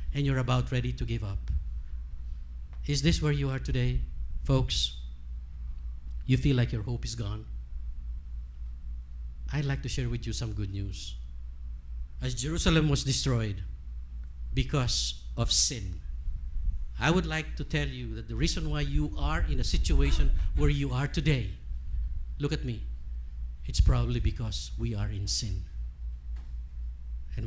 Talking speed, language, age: 145 wpm, English, 50-69